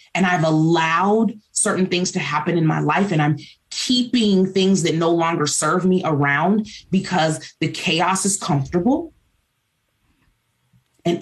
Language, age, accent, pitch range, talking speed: English, 30-49, American, 155-205 Hz, 140 wpm